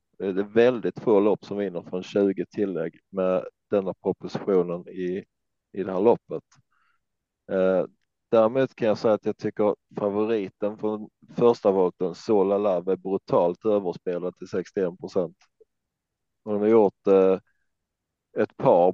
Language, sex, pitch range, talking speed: Swedish, male, 95-110 Hz, 135 wpm